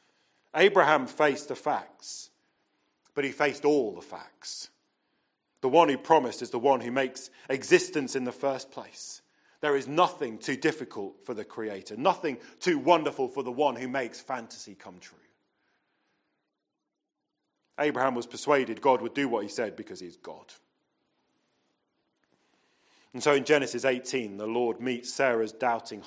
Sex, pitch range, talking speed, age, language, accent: male, 130-175 Hz, 150 wpm, 40-59, English, British